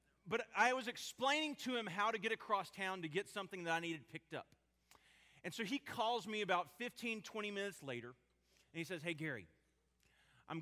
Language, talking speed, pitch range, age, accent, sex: English, 200 wpm, 120-195 Hz, 30-49, American, male